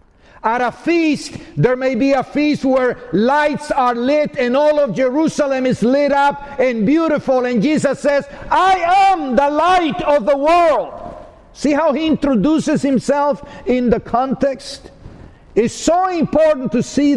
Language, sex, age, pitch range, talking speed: English, male, 50-69, 215-285 Hz, 155 wpm